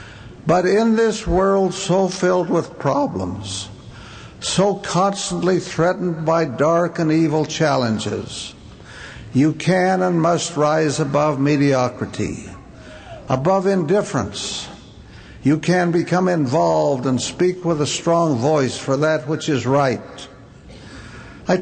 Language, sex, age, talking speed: English, male, 60-79, 115 wpm